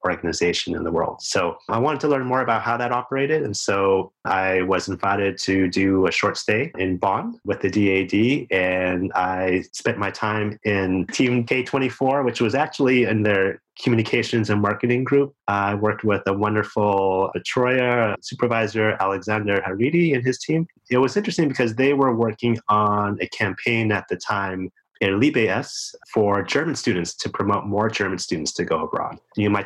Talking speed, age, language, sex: 170 wpm, 30-49, English, male